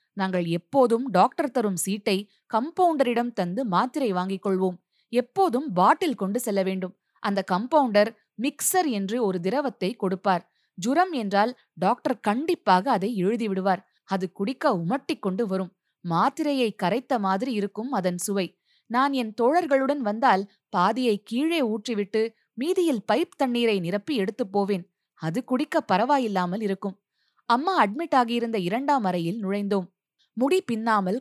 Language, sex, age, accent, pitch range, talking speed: Tamil, female, 20-39, native, 190-255 Hz, 125 wpm